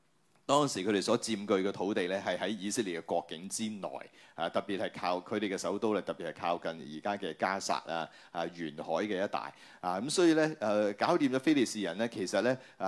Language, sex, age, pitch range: Chinese, male, 30-49, 100-140 Hz